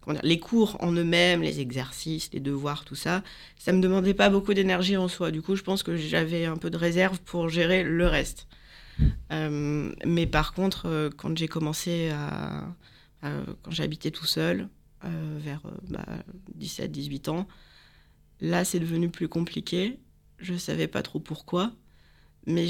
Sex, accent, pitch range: female, French, 155-180 Hz